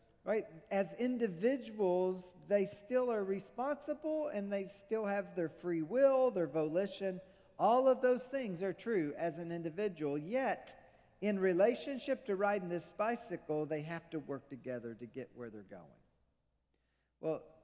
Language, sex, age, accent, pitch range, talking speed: English, male, 50-69, American, 160-215 Hz, 145 wpm